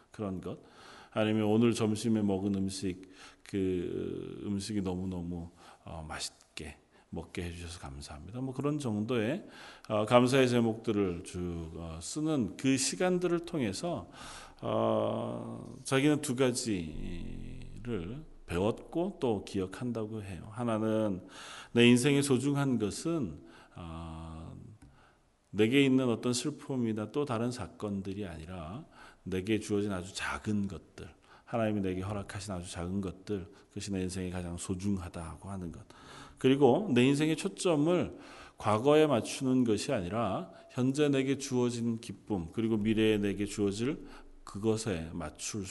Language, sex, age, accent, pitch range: Korean, male, 40-59, native, 90-125 Hz